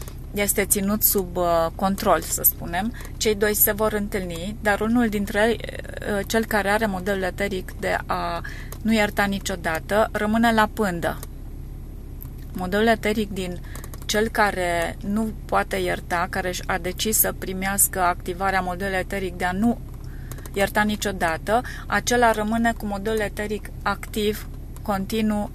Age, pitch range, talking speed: 30-49, 180-210 Hz, 130 wpm